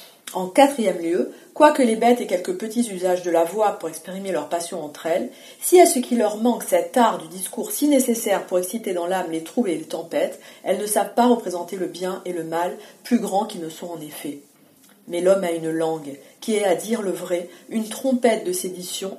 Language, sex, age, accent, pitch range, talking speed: French, female, 40-59, French, 175-240 Hz, 225 wpm